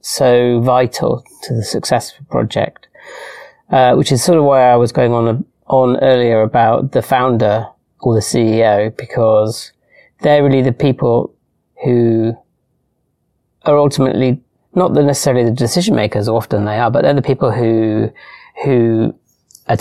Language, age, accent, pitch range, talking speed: English, 30-49, British, 115-135 Hz, 155 wpm